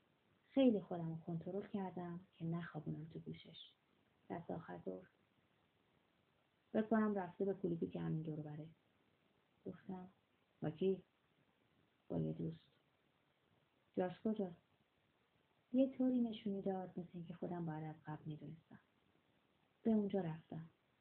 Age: 30-49